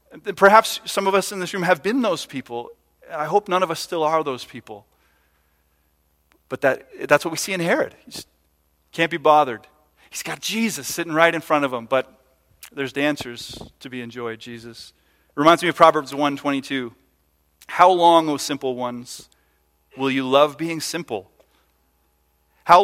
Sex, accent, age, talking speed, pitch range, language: male, American, 40-59, 165 wpm, 105-170 Hz, English